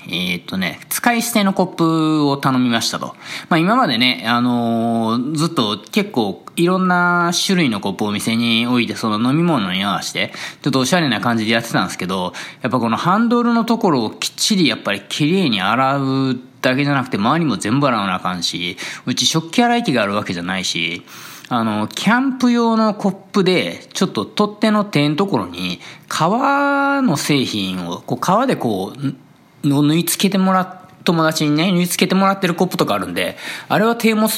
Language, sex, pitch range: Japanese, male, 115-185 Hz